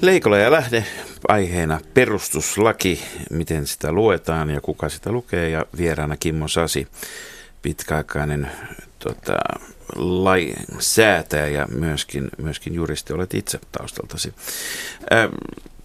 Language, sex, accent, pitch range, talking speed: Finnish, male, native, 75-90 Hz, 100 wpm